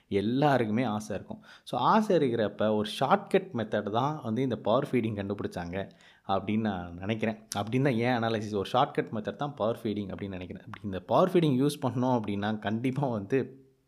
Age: 20-39